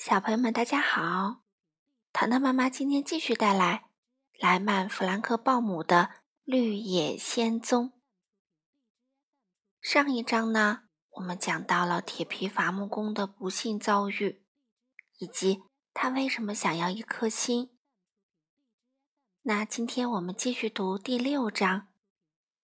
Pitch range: 195-255 Hz